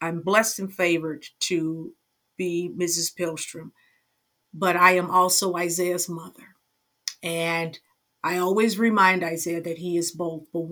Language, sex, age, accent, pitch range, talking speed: English, female, 50-69, American, 170-215 Hz, 135 wpm